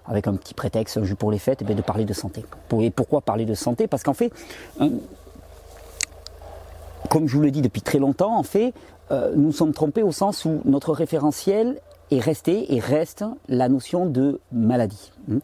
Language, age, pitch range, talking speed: French, 40-59, 115-165 Hz, 185 wpm